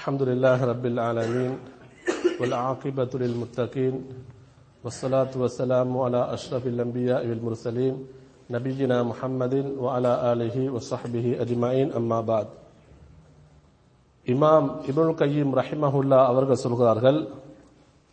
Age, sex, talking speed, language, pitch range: 50-69, male, 90 wpm, English, 130-175 Hz